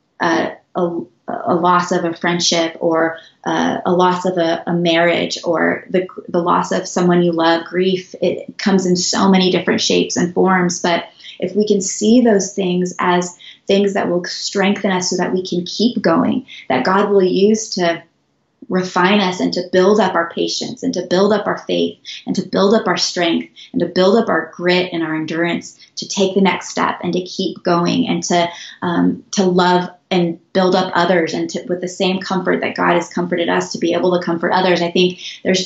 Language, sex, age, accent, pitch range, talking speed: English, female, 20-39, American, 175-200 Hz, 210 wpm